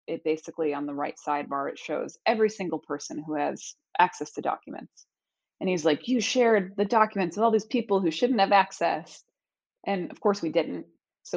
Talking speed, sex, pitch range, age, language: 190 wpm, female, 155-205 Hz, 20-39, English